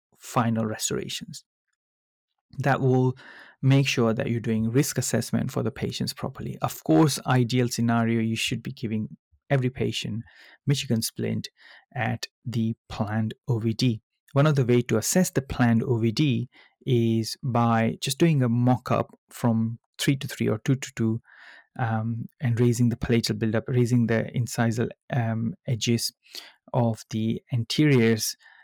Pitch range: 115-135 Hz